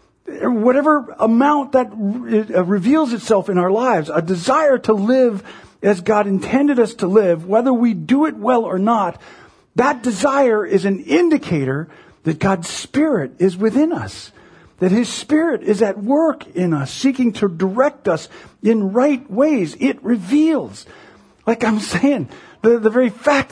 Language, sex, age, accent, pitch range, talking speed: English, male, 50-69, American, 160-250 Hz, 155 wpm